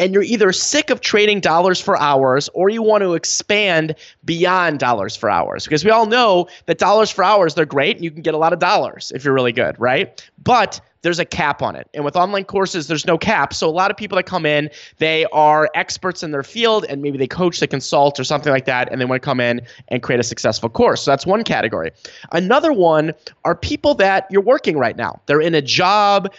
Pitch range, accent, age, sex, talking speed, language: 145-190 Hz, American, 20-39, male, 240 wpm, English